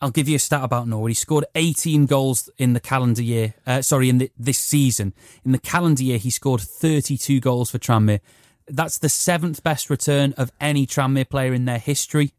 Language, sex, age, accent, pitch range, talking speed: English, male, 30-49, British, 120-150 Hz, 210 wpm